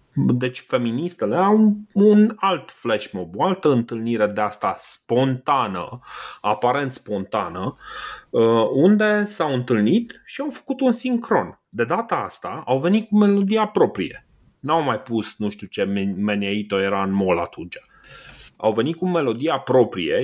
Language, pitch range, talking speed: Romanian, 105-170 Hz, 140 wpm